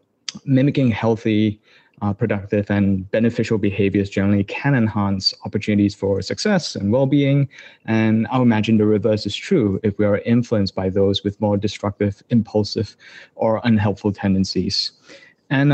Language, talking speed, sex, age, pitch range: English, 135 wpm, male, 30-49, 105-130 Hz